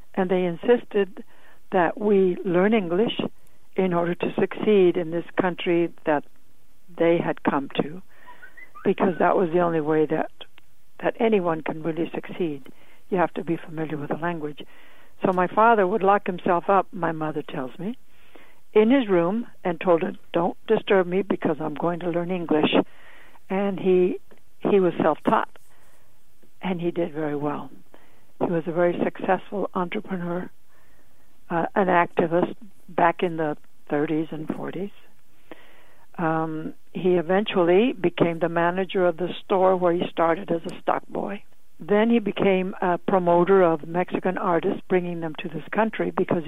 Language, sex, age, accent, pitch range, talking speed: English, female, 60-79, American, 170-195 Hz, 155 wpm